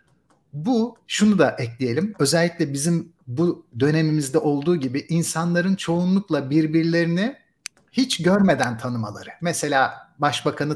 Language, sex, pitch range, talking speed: Turkish, male, 145-220 Hz, 100 wpm